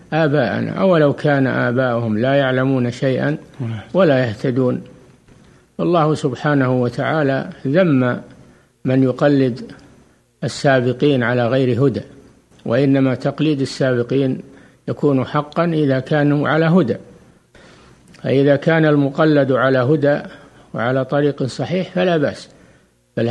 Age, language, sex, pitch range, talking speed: 60-79, Arabic, male, 125-150 Hz, 100 wpm